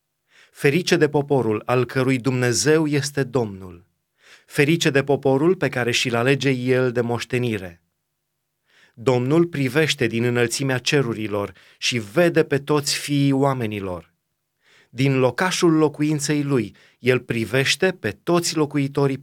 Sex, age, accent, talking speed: male, 30-49, native, 120 wpm